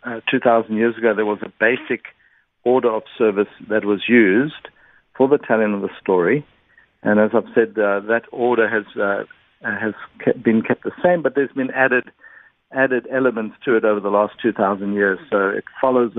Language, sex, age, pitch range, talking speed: English, male, 60-79, 105-120 Hz, 190 wpm